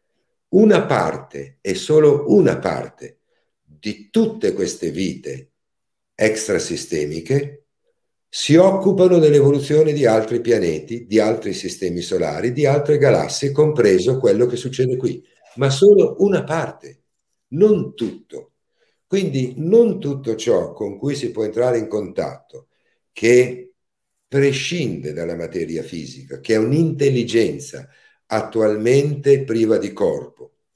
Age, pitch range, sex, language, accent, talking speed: 60-79, 110-165 Hz, male, Italian, native, 115 wpm